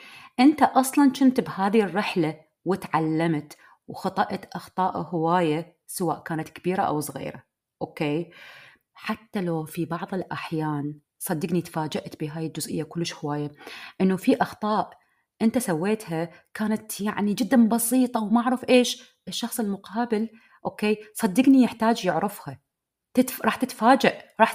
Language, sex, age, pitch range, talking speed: Arabic, female, 30-49, 170-240 Hz, 115 wpm